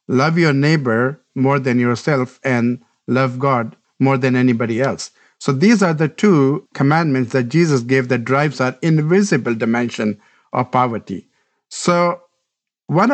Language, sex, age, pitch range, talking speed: English, male, 50-69, 130-155 Hz, 140 wpm